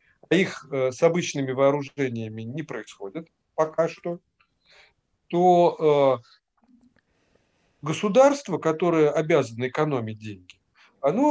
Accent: native